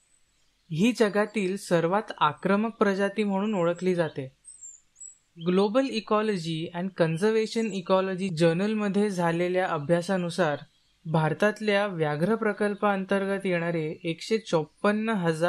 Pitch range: 165-210 Hz